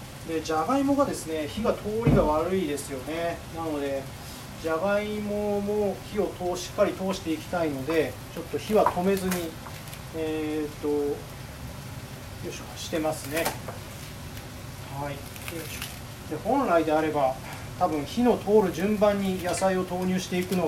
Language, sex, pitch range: Japanese, male, 130-185 Hz